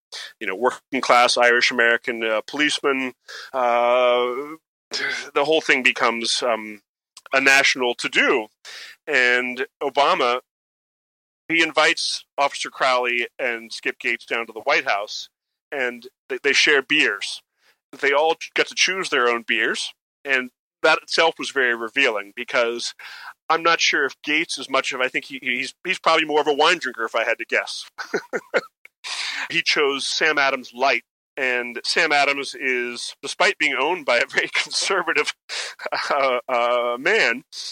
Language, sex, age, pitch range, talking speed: English, male, 30-49, 120-155 Hz, 150 wpm